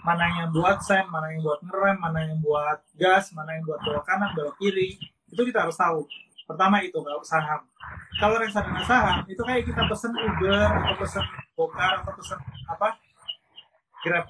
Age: 20-39